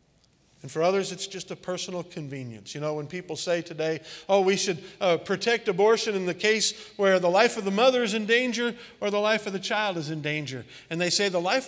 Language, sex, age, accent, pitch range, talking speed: English, male, 50-69, American, 150-225 Hz, 235 wpm